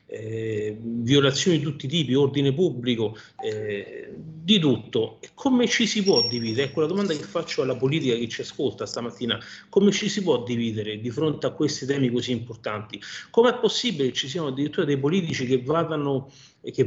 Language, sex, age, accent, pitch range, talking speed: Italian, male, 40-59, native, 130-180 Hz, 180 wpm